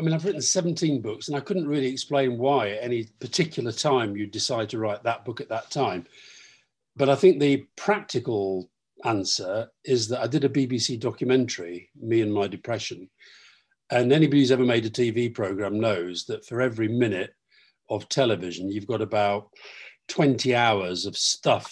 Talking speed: 180 wpm